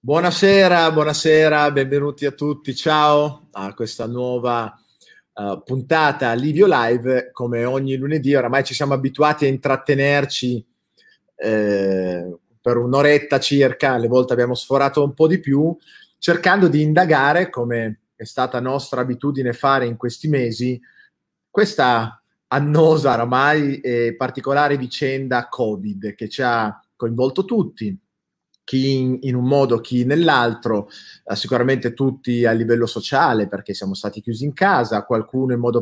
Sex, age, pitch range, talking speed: male, 30-49, 115-145 Hz, 130 wpm